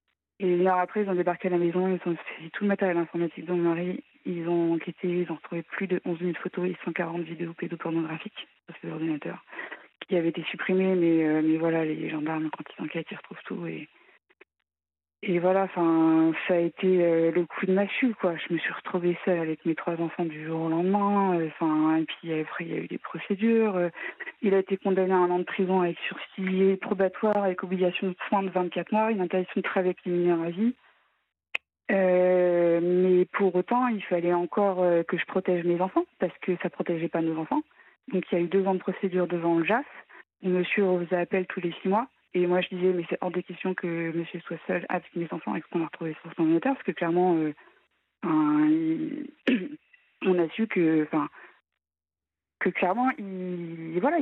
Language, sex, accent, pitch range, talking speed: French, female, French, 170-195 Hz, 215 wpm